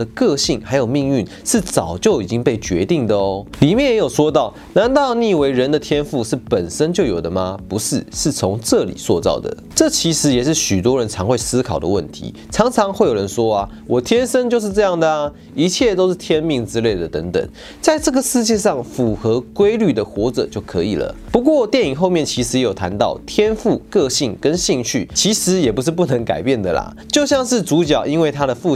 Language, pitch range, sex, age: Chinese, 110-185 Hz, male, 30-49